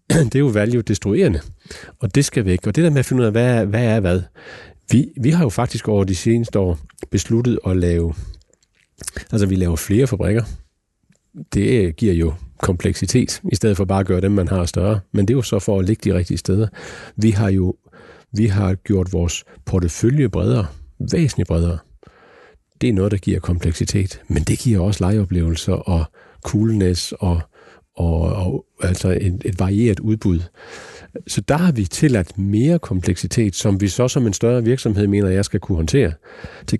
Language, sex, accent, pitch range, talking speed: Danish, male, native, 95-115 Hz, 190 wpm